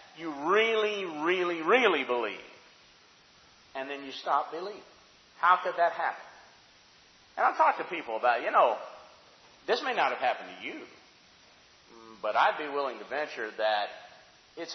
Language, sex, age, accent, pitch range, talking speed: English, male, 50-69, American, 170-255 Hz, 150 wpm